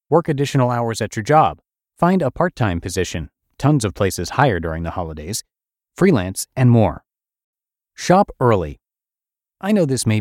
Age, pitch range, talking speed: 30-49, 95-135 Hz, 155 wpm